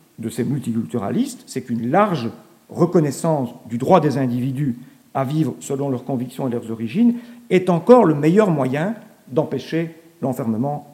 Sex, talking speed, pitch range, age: male, 145 wpm, 130-190 Hz, 50-69